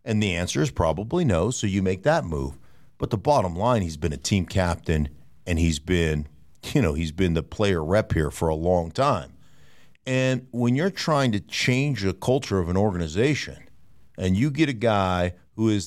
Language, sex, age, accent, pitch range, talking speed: English, male, 50-69, American, 90-125 Hz, 200 wpm